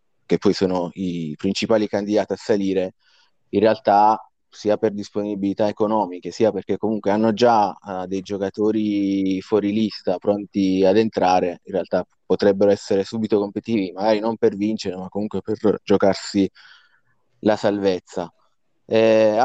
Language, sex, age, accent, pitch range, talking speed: Italian, male, 30-49, native, 95-105 Hz, 135 wpm